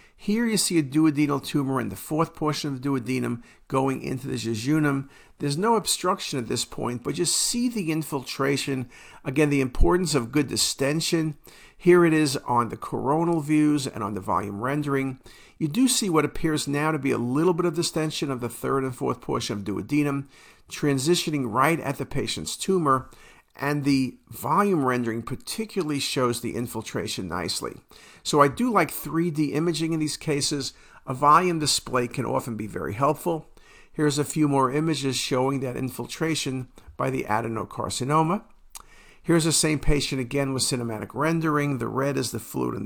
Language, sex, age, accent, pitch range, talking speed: English, male, 50-69, American, 130-160 Hz, 175 wpm